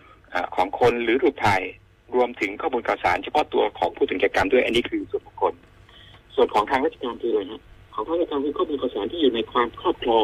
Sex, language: male, Thai